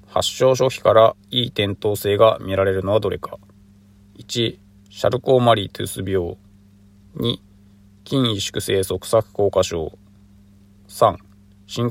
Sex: male